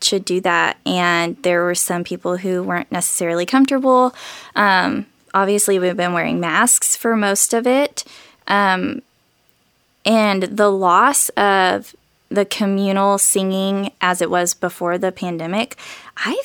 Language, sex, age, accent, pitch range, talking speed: English, female, 20-39, American, 175-205 Hz, 135 wpm